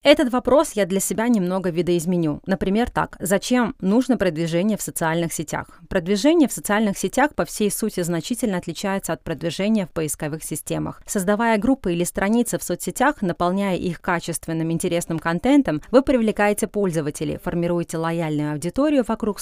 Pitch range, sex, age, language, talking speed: 165-225 Hz, female, 30-49, English, 145 wpm